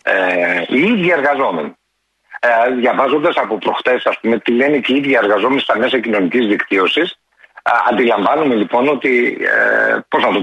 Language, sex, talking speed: Greek, male, 155 wpm